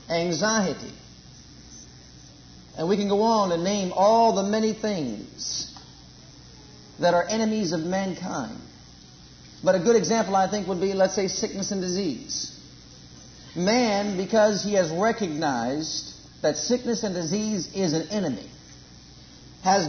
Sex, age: male, 50-69